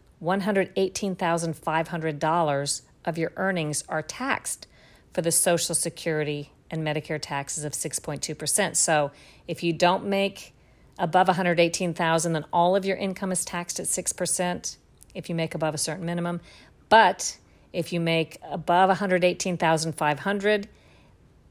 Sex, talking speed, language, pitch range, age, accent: female, 120 wpm, English, 155-180 Hz, 50-69, American